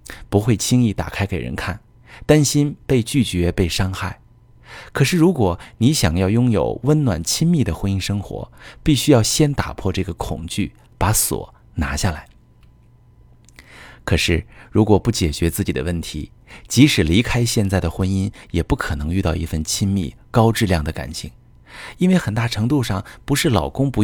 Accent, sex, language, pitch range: native, male, Chinese, 85-115 Hz